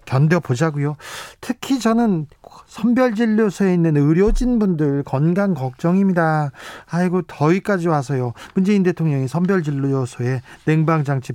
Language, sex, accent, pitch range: Korean, male, native, 145-185 Hz